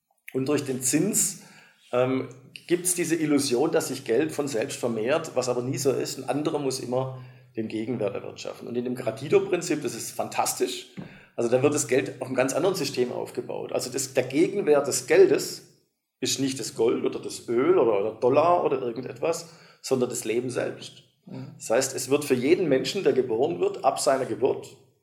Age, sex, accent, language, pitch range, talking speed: 50-69, male, German, German, 130-180 Hz, 190 wpm